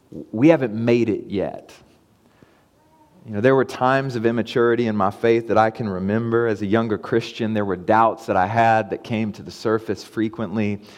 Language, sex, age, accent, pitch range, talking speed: English, male, 30-49, American, 105-125 Hz, 190 wpm